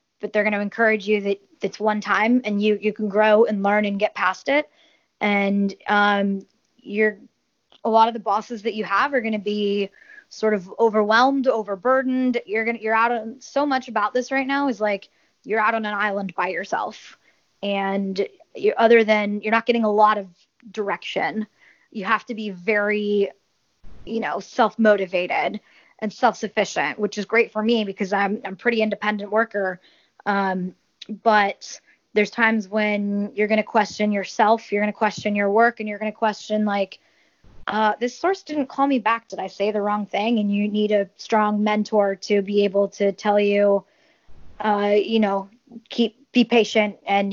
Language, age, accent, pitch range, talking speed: English, 20-39, American, 205-225 Hz, 190 wpm